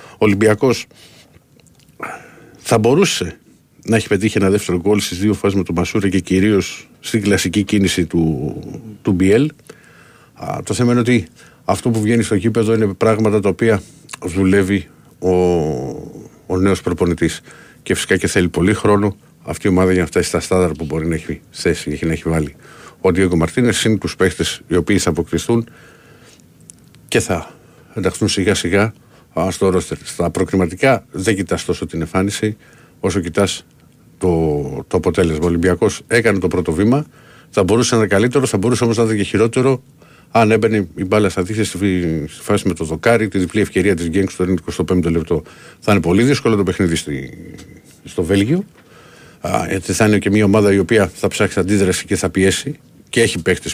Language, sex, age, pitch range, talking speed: Greek, male, 50-69, 90-110 Hz, 175 wpm